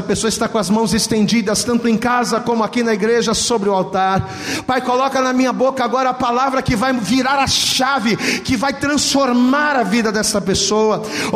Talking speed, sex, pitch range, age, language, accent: 200 wpm, male, 205-270 Hz, 40-59, Portuguese, Brazilian